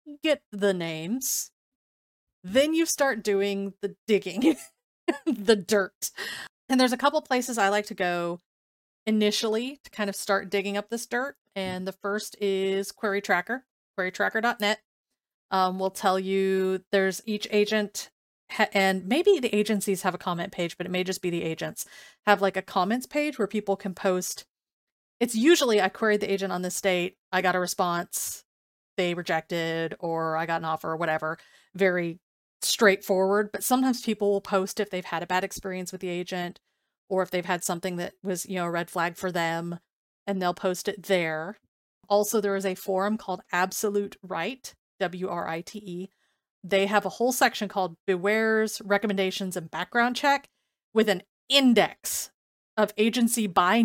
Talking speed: 170 wpm